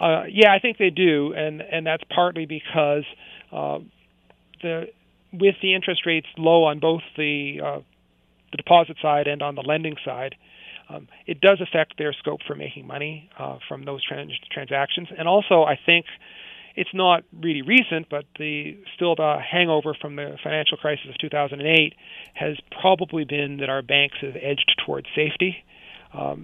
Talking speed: 170 wpm